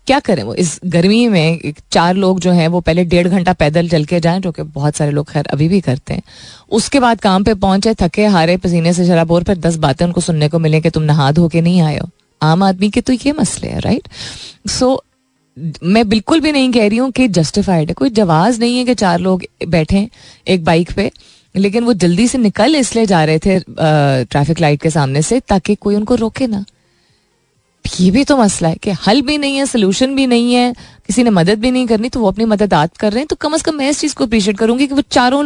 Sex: female